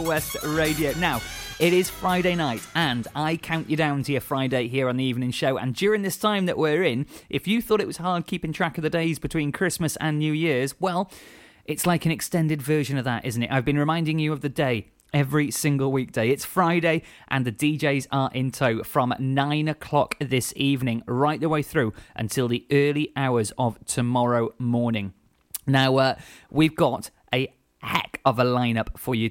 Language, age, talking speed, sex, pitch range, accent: English, 30-49, 200 wpm, male, 130-155 Hz, British